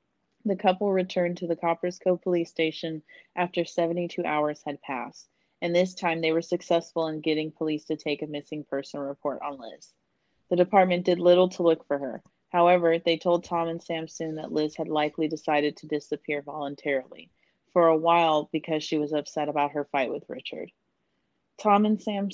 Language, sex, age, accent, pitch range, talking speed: English, female, 30-49, American, 150-175 Hz, 185 wpm